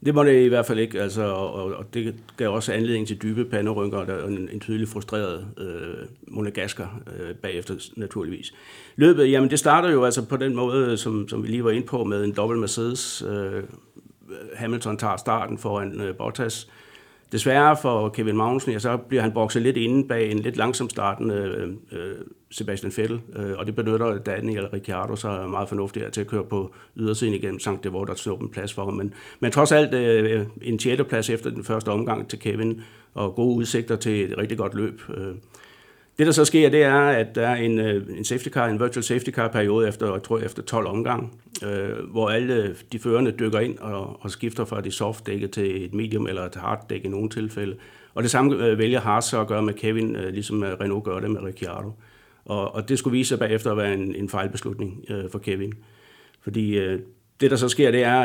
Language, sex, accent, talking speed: Danish, male, native, 205 wpm